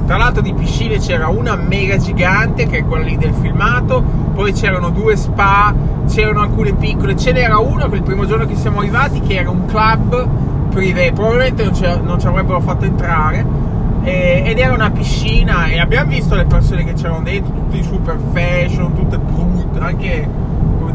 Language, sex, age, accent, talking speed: Italian, male, 20-39, native, 180 wpm